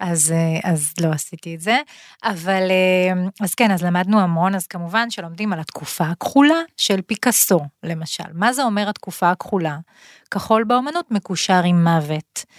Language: Hebrew